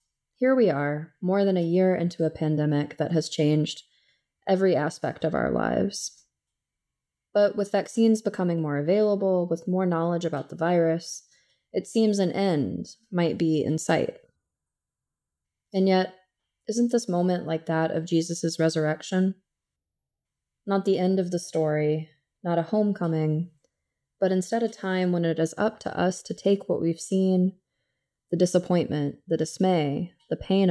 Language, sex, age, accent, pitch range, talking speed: English, female, 20-39, American, 160-195 Hz, 150 wpm